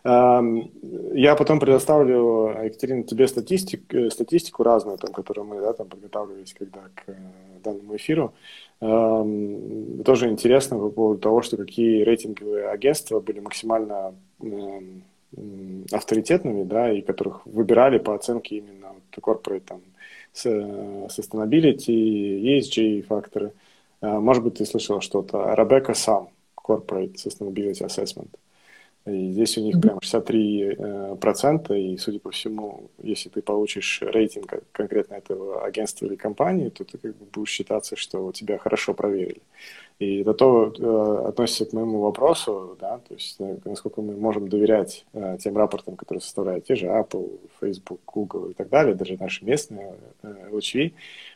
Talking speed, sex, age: 135 wpm, male, 20-39